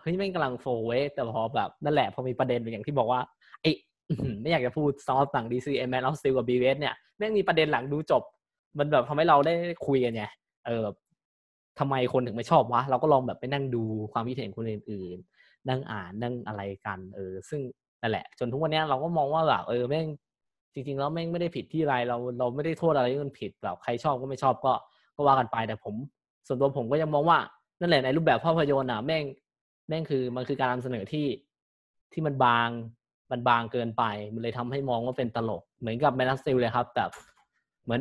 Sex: male